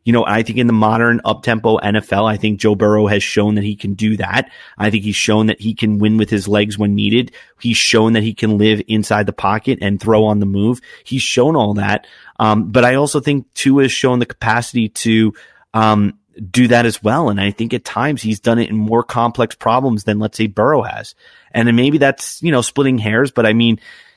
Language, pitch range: English, 105-120 Hz